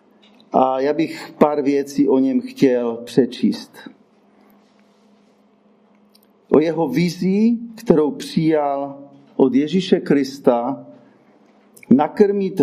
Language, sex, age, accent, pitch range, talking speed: Czech, male, 40-59, native, 150-220 Hz, 85 wpm